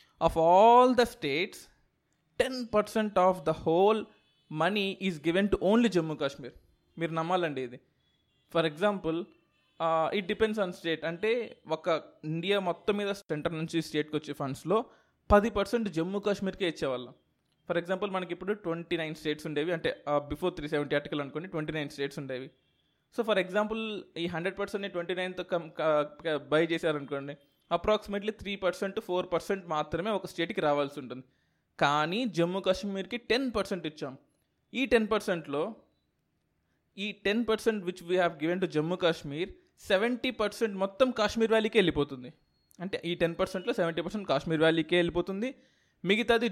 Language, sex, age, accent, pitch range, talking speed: Telugu, male, 20-39, native, 155-210 Hz, 145 wpm